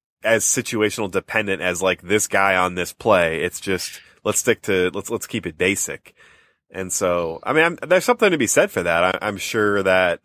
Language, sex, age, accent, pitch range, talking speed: English, male, 20-39, American, 90-115 Hz, 200 wpm